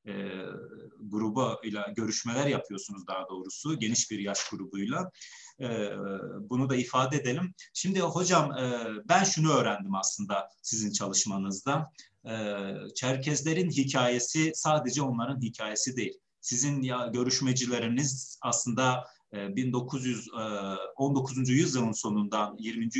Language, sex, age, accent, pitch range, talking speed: Turkish, male, 40-59, native, 110-135 Hz, 105 wpm